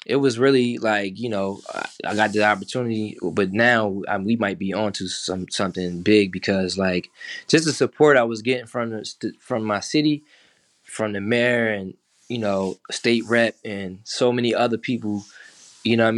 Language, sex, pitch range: English, male, 100-115 Hz